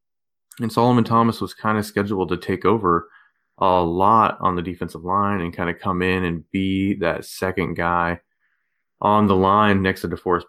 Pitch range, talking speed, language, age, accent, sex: 90-105 Hz, 185 wpm, English, 20-39, American, male